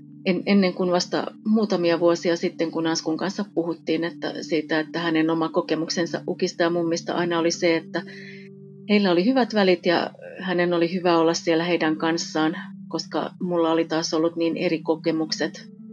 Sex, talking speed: female, 160 wpm